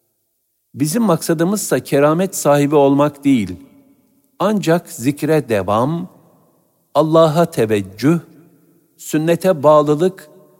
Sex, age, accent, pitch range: male, 60-79, native, 110-160 Hz